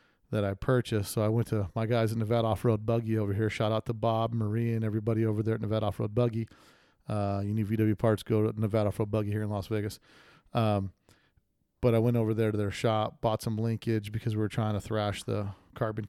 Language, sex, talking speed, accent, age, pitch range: English, male, 230 wpm, American, 40-59, 110-125 Hz